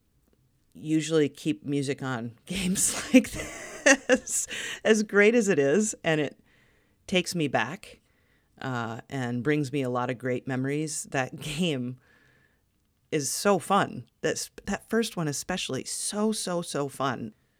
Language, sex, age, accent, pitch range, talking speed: English, female, 40-59, American, 120-150 Hz, 135 wpm